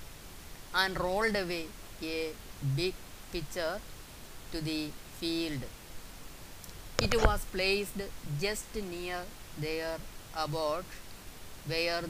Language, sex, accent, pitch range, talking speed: Malayalam, female, native, 140-180 Hz, 85 wpm